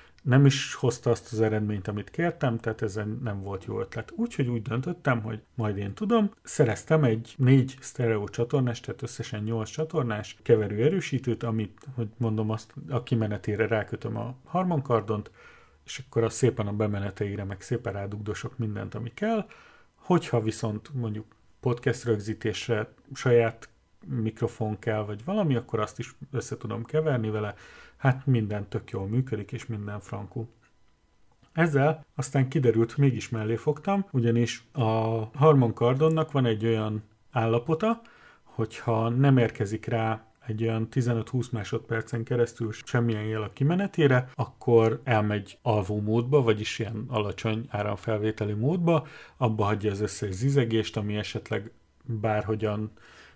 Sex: male